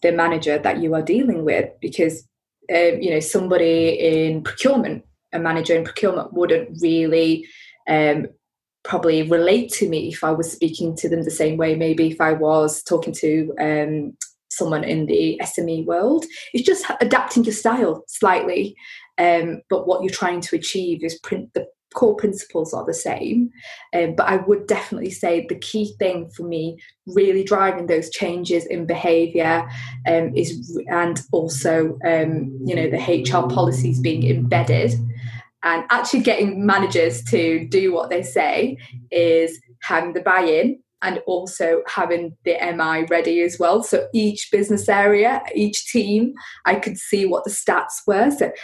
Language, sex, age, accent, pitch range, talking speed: English, female, 20-39, British, 160-200 Hz, 160 wpm